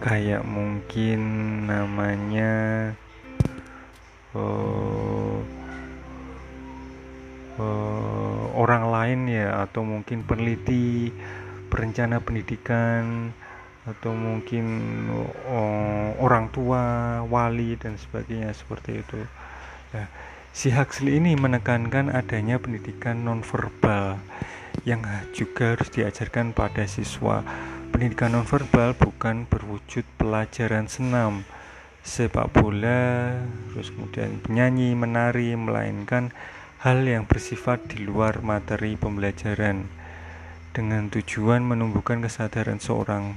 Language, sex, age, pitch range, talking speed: Indonesian, male, 30-49, 105-120 Hz, 85 wpm